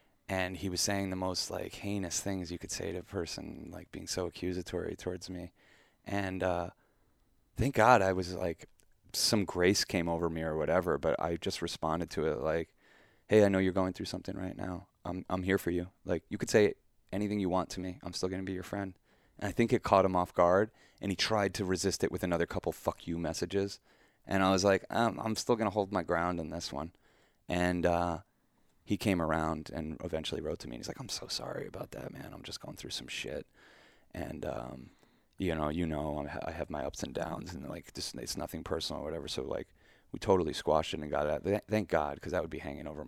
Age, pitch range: 20-39, 85-100 Hz